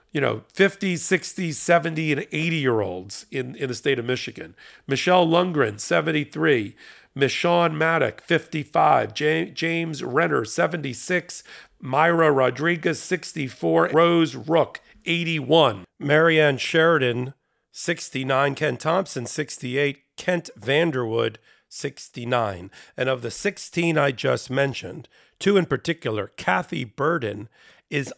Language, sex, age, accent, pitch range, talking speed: English, male, 40-59, American, 130-165 Hz, 110 wpm